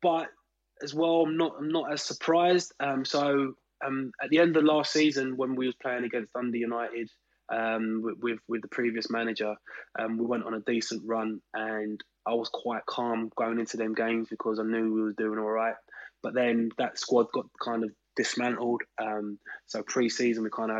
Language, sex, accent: English, male, British